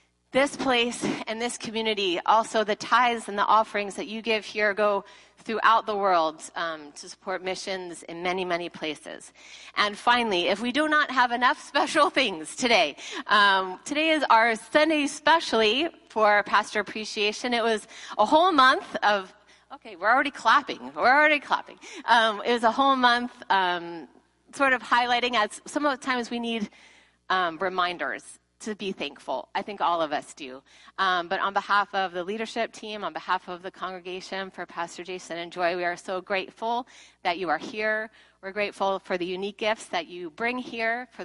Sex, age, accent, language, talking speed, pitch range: female, 30-49, American, English, 180 wpm, 190-245 Hz